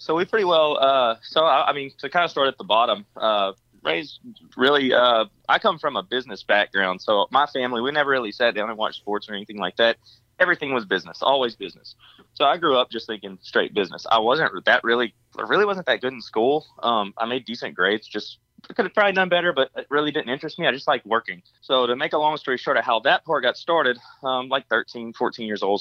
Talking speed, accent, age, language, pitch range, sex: 240 wpm, American, 20-39, English, 110-150 Hz, male